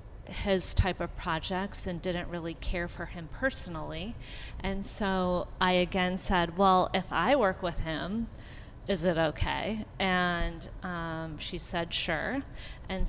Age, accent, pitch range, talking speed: 30-49, American, 170-190 Hz, 140 wpm